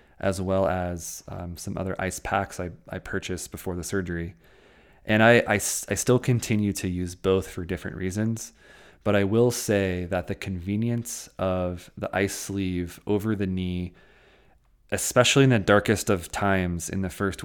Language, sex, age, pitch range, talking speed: English, male, 20-39, 90-105 Hz, 170 wpm